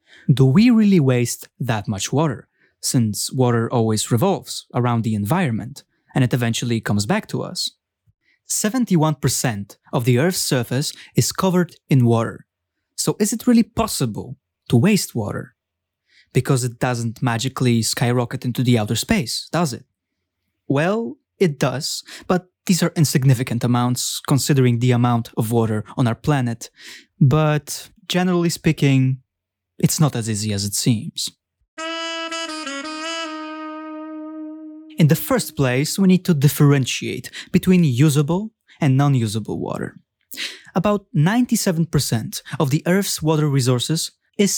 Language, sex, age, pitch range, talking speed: English, male, 20-39, 120-185 Hz, 130 wpm